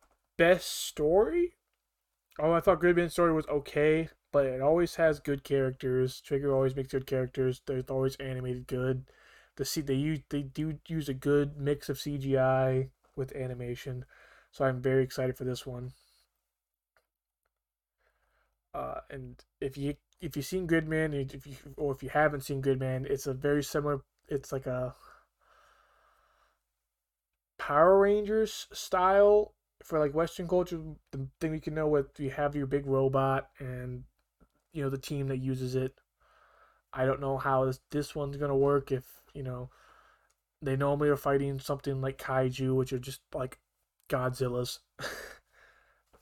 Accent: American